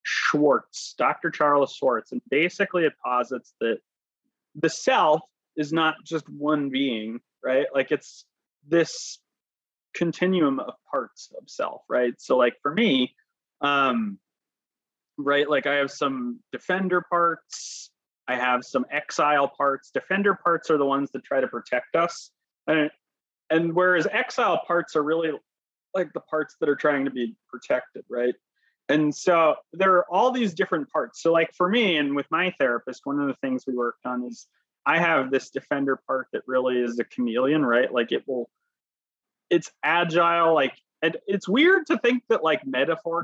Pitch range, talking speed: 135-180 Hz, 165 wpm